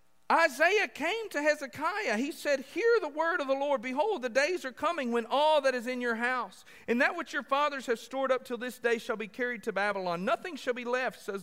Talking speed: 235 wpm